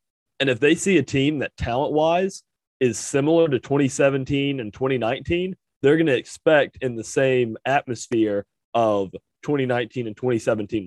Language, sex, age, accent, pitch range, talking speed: English, male, 30-49, American, 110-140 Hz, 145 wpm